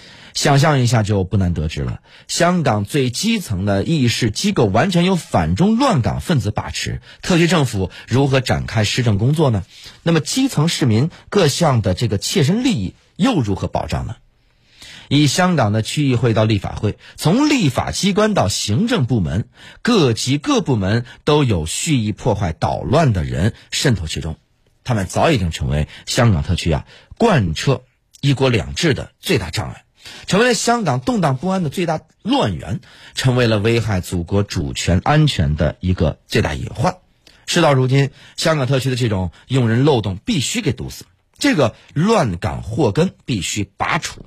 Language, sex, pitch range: Chinese, male, 100-150 Hz